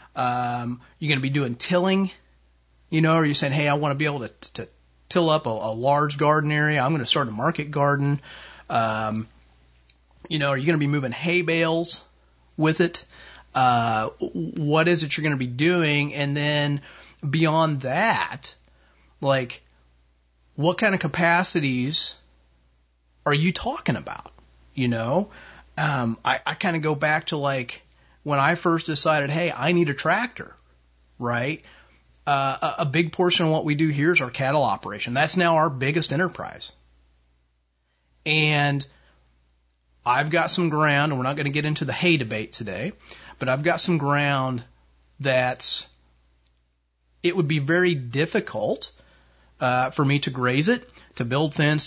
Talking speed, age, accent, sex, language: 170 wpm, 30-49, American, male, English